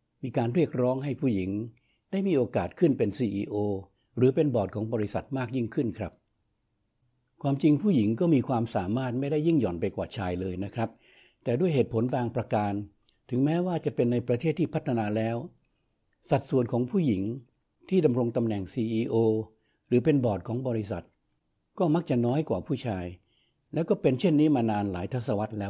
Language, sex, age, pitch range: Thai, male, 60-79, 110-140 Hz